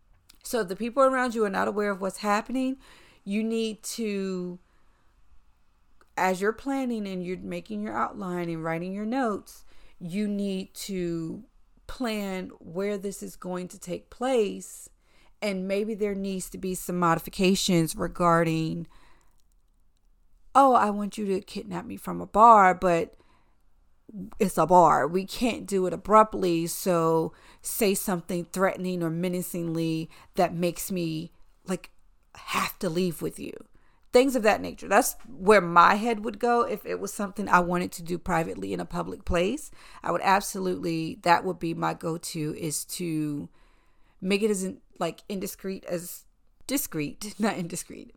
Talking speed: 150 wpm